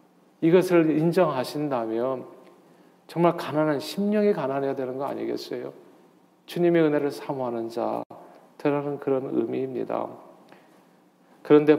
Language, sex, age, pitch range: Korean, male, 40-59, 120-150 Hz